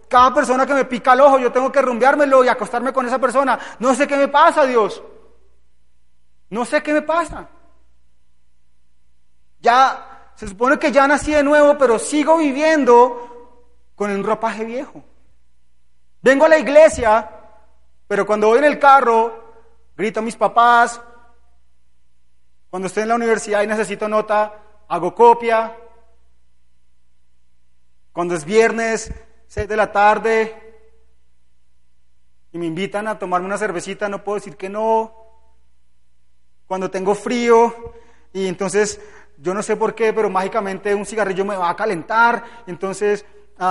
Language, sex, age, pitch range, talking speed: Spanish, male, 30-49, 170-235 Hz, 145 wpm